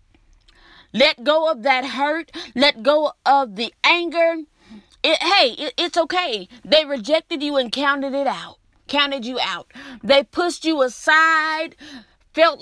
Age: 30-49